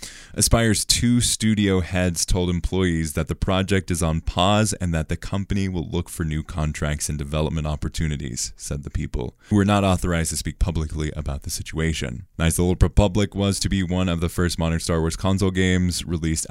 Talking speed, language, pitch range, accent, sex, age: 195 wpm, English, 80-100 Hz, American, male, 20-39